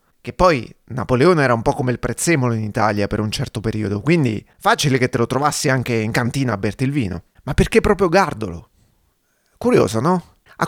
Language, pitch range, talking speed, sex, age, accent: Italian, 115-180 Hz, 195 wpm, male, 30-49, native